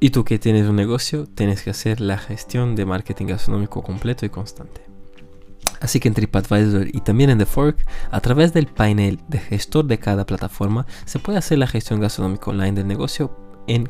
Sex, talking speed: male, 195 wpm